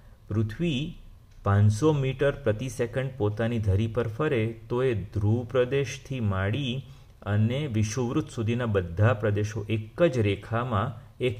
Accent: native